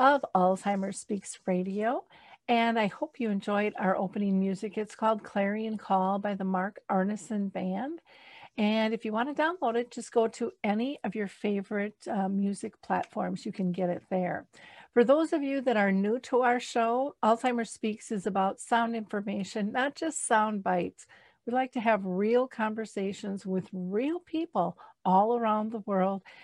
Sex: female